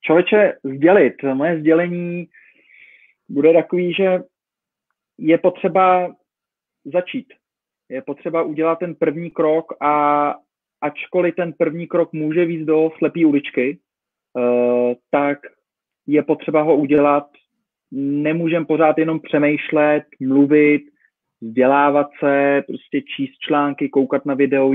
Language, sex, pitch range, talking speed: Slovak, male, 140-160 Hz, 105 wpm